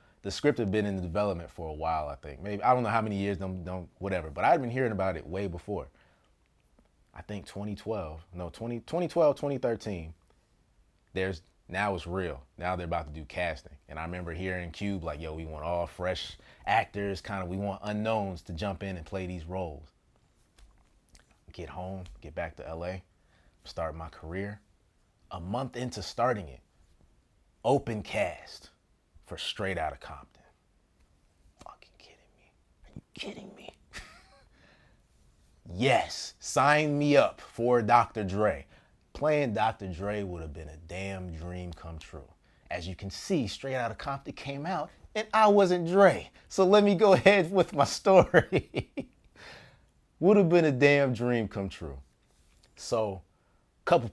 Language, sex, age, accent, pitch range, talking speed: English, male, 30-49, American, 85-115 Hz, 165 wpm